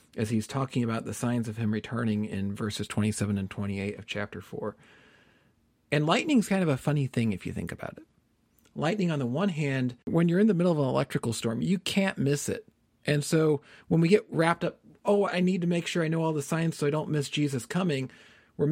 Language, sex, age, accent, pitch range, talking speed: English, male, 40-59, American, 120-160 Hz, 230 wpm